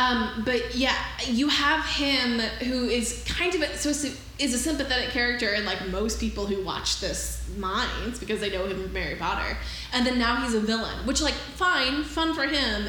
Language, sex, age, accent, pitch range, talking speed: English, female, 10-29, American, 200-250 Hz, 200 wpm